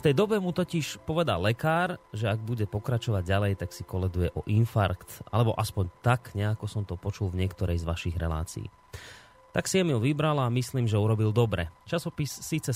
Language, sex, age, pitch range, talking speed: Slovak, male, 30-49, 100-140 Hz, 195 wpm